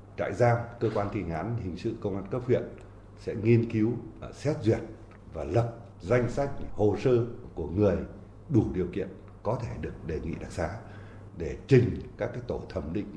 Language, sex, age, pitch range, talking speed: Vietnamese, male, 60-79, 95-115 Hz, 185 wpm